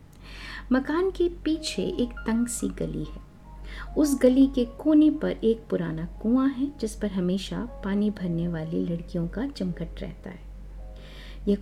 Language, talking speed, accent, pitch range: Hindi, 150 wpm, native, 190-260 Hz